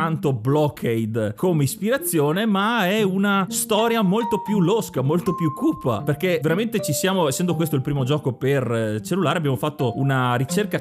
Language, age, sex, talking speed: Italian, 30-49, male, 160 wpm